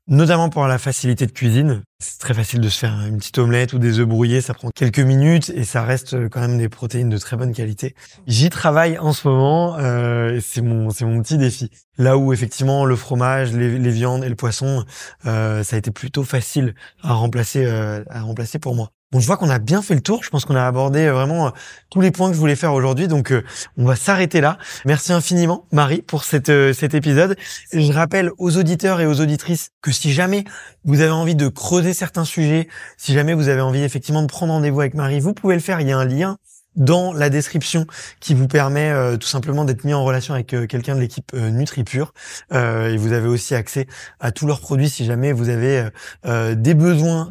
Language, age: French, 20-39